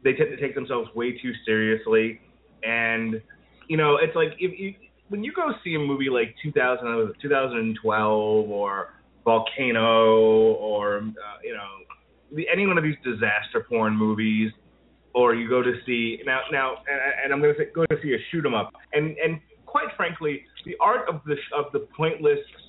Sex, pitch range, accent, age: male, 115-185 Hz, American, 30-49